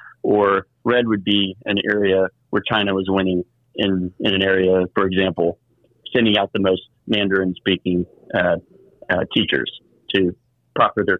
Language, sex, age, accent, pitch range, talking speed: English, male, 40-59, American, 95-120 Hz, 145 wpm